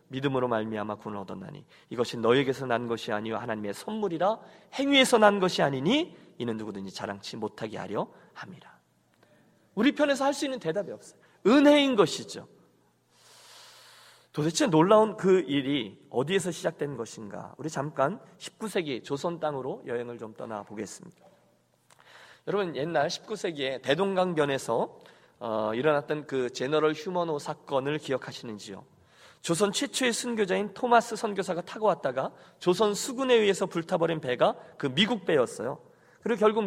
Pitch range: 135-210 Hz